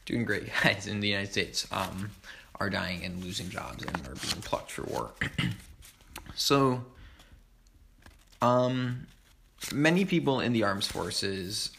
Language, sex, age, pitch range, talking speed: English, male, 20-39, 100-115 Hz, 135 wpm